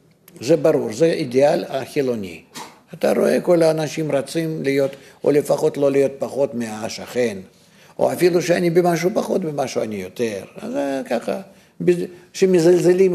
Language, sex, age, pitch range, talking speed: English, male, 50-69, 135-180 Hz, 130 wpm